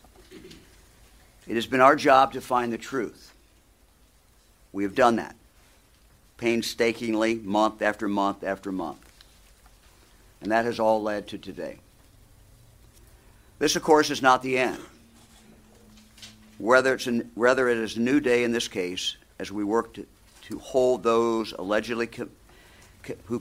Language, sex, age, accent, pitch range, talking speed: English, male, 50-69, American, 100-115 Hz, 135 wpm